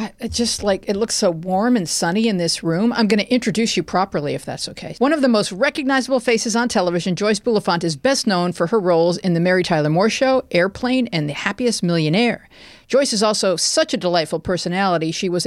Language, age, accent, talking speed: English, 40-59, American, 220 wpm